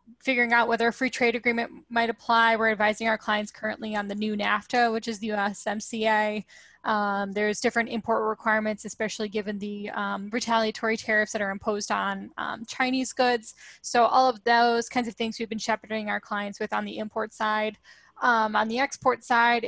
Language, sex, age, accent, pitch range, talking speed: English, female, 10-29, American, 210-235 Hz, 190 wpm